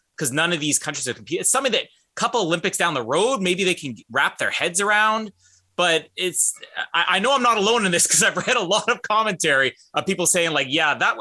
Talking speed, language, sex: 245 wpm, English, male